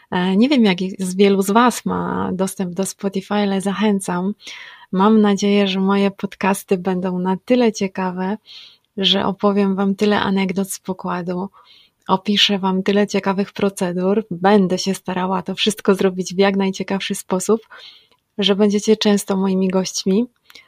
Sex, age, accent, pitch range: female, 30-49, native, 190-215 Hz